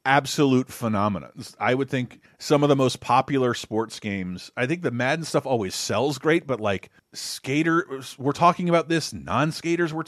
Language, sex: English, male